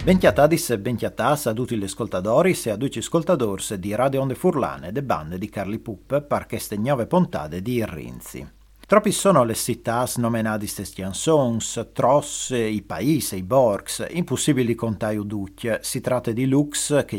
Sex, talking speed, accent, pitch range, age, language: male, 170 wpm, native, 100-135 Hz, 40-59, Italian